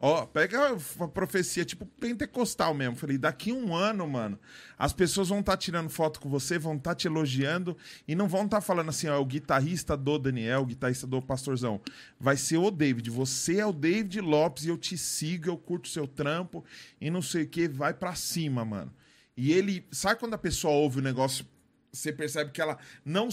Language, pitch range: Portuguese, 150-190 Hz